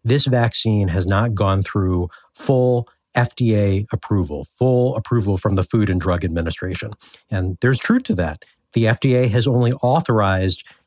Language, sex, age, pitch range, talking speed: English, male, 50-69, 100-130 Hz, 150 wpm